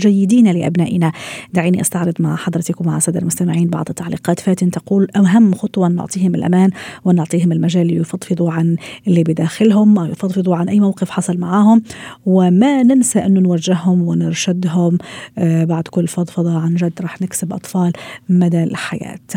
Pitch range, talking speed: 175-210 Hz, 140 wpm